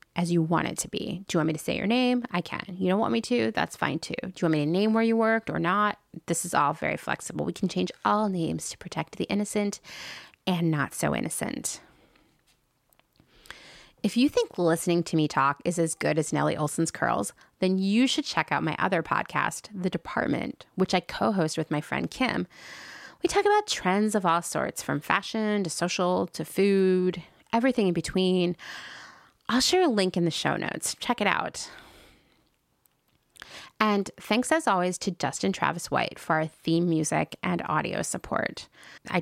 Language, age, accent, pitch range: English, 20-39, American, 160-215 Hz